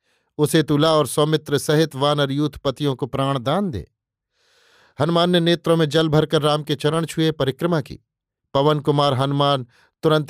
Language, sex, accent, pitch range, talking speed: Hindi, male, native, 135-155 Hz, 155 wpm